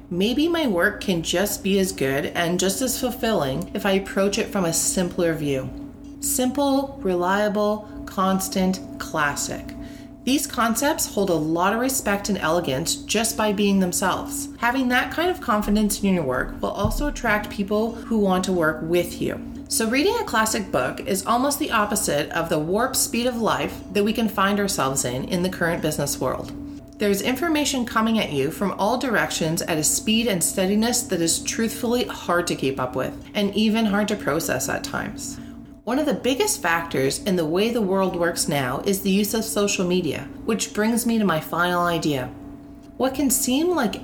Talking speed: 190 wpm